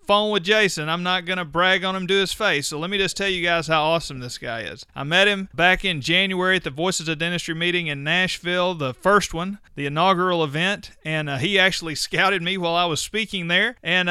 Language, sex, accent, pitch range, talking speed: English, male, American, 160-205 Hz, 240 wpm